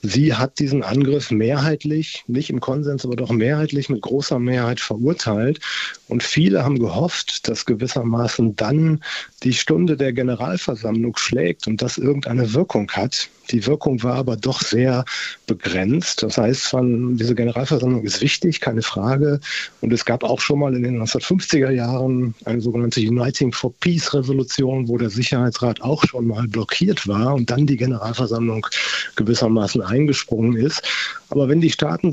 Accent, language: German, German